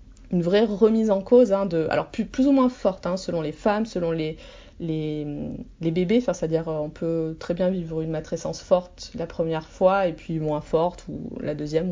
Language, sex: French, female